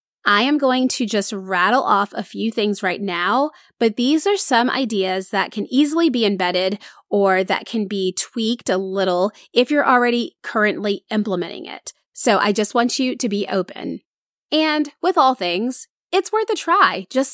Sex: female